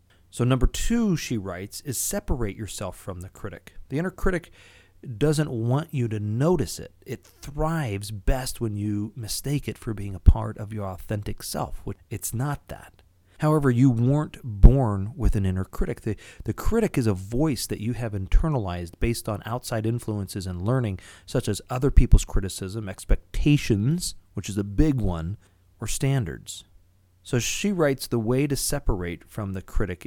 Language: English